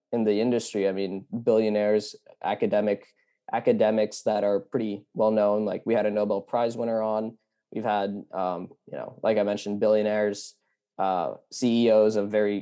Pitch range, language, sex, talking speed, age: 105-120 Hz, English, male, 160 wpm, 20-39